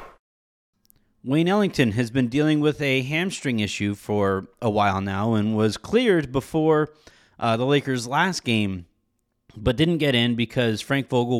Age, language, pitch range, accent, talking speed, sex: 30-49, English, 105-135 Hz, American, 155 wpm, male